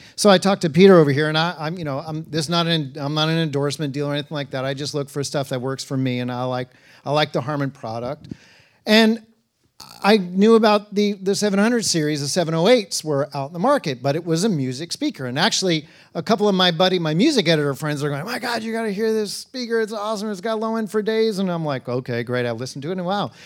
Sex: male